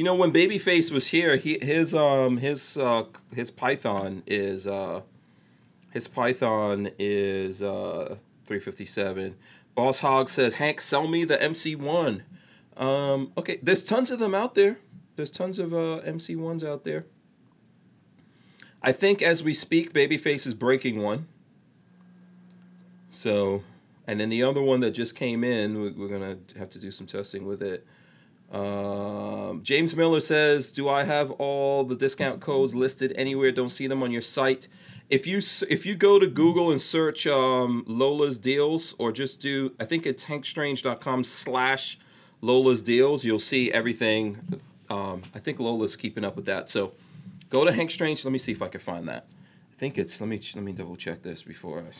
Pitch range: 115-160 Hz